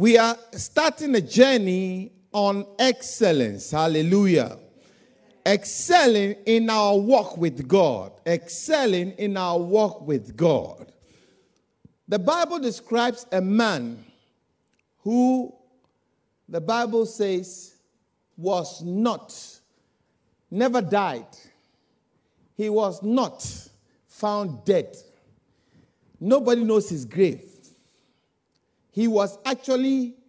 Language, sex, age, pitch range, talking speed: English, male, 50-69, 180-235 Hz, 90 wpm